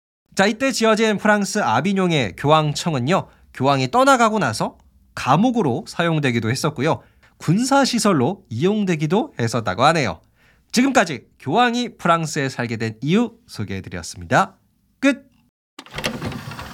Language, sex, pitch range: Korean, male, 120-195 Hz